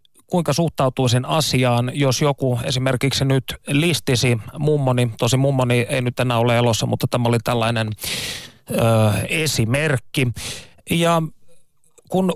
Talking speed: 115 wpm